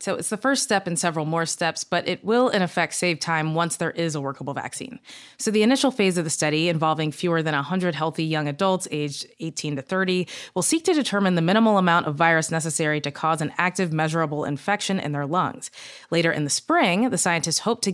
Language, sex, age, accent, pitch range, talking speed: English, female, 20-39, American, 155-195 Hz, 225 wpm